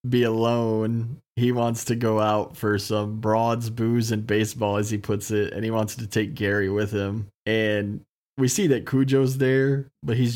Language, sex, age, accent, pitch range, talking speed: English, male, 20-39, American, 105-115 Hz, 190 wpm